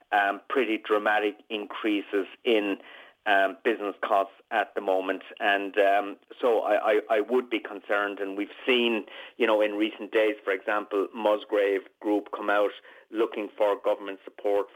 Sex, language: male, English